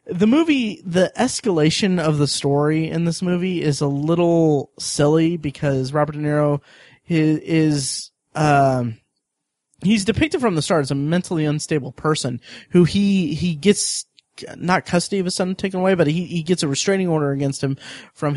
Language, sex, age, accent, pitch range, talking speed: English, male, 30-49, American, 140-170 Hz, 175 wpm